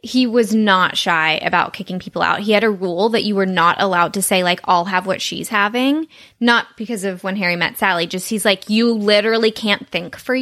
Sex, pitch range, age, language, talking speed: female, 190-235 Hz, 10-29, English, 230 wpm